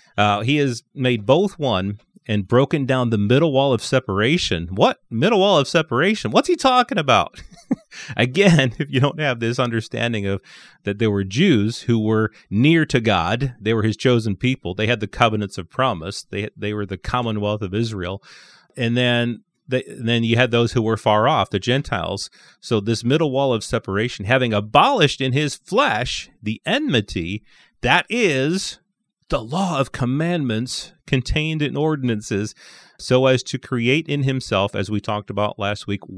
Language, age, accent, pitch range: English, 30-49, American, 105-135 Hz